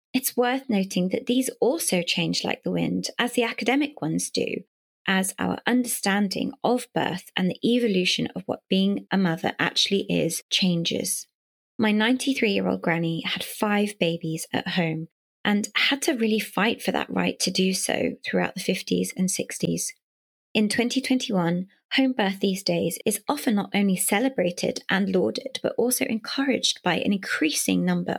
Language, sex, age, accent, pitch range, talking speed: English, female, 20-39, British, 180-240 Hz, 165 wpm